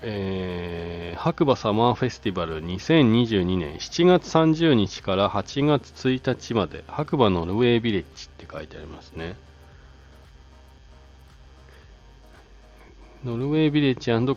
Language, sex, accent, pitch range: Japanese, male, native, 80-125 Hz